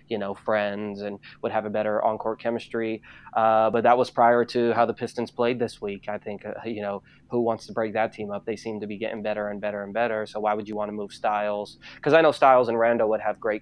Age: 20-39